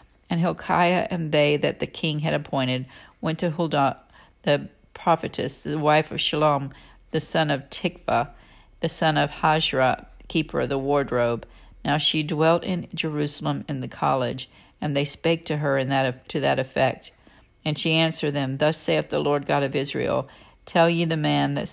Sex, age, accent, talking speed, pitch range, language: female, 50-69, American, 180 wpm, 135-155 Hz, English